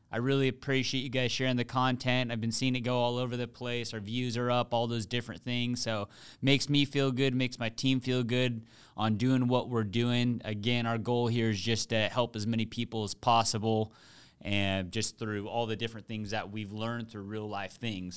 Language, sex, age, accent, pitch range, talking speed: English, male, 30-49, American, 110-125 Hz, 220 wpm